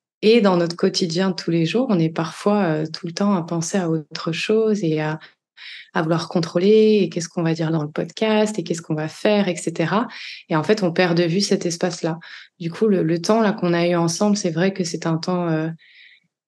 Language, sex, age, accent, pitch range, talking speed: French, female, 20-39, French, 165-195 Hz, 235 wpm